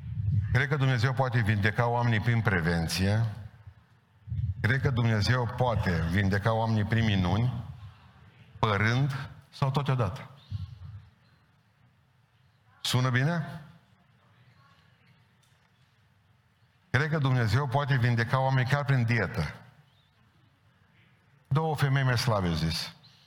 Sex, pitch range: male, 110-140 Hz